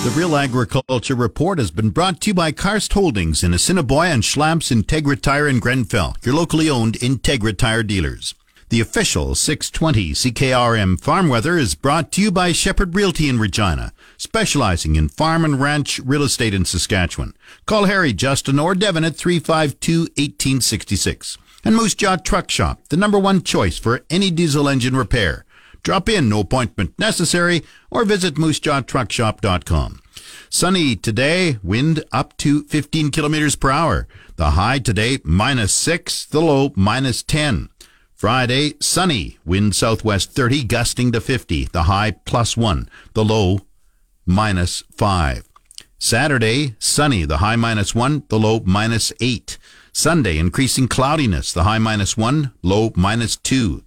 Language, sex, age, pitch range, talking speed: English, male, 50-69, 105-155 Hz, 150 wpm